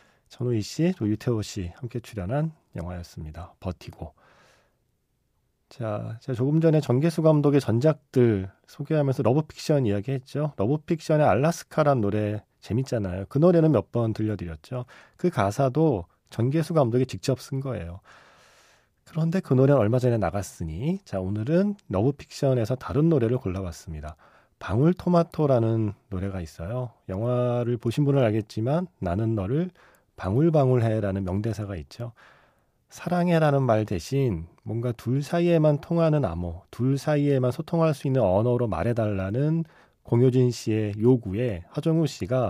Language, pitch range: Korean, 100-145 Hz